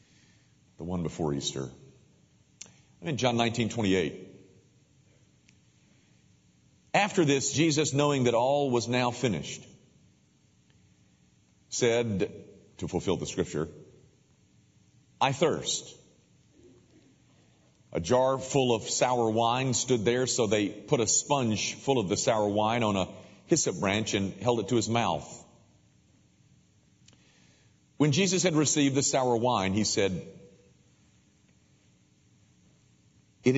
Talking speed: 115 wpm